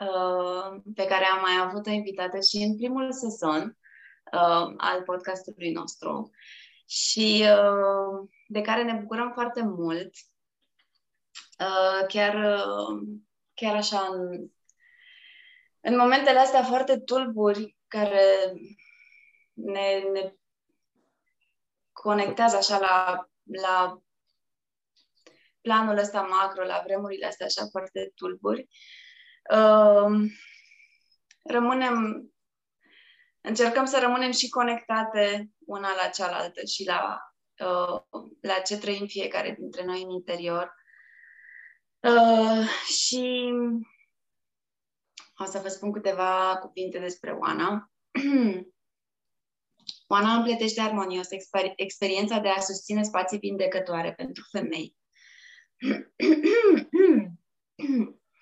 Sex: female